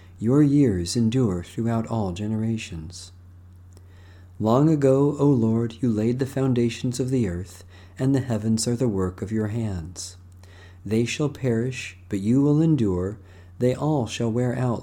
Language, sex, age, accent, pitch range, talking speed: English, male, 40-59, American, 90-125 Hz, 155 wpm